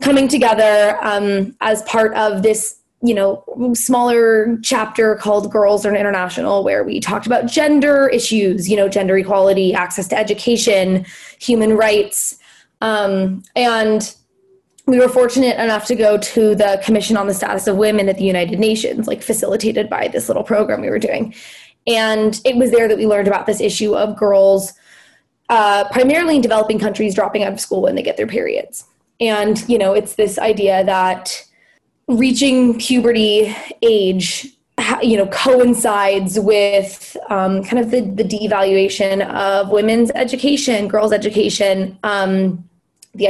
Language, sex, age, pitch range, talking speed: English, female, 20-39, 200-235 Hz, 155 wpm